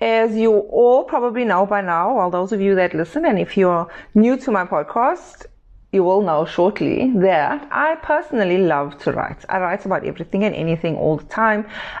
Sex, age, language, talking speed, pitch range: female, 30-49, English, 200 wpm, 175-230 Hz